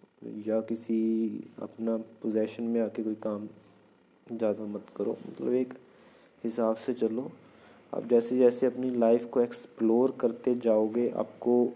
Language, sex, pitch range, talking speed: Hindi, male, 110-120 Hz, 135 wpm